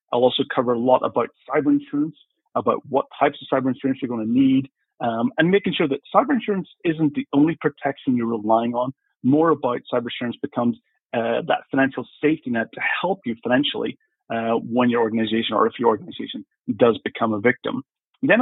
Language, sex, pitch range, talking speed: English, male, 120-155 Hz, 190 wpm